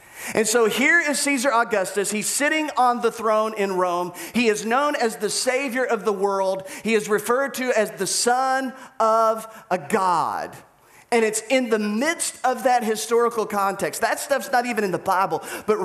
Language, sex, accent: English, male, American